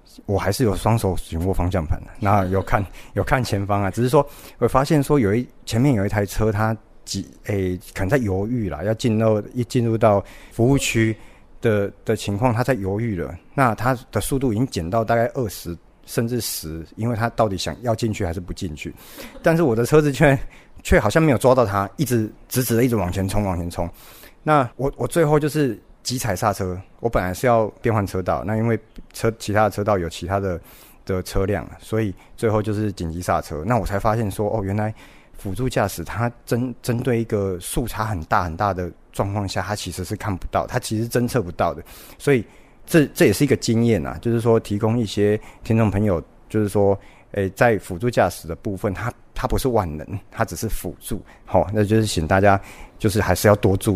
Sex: male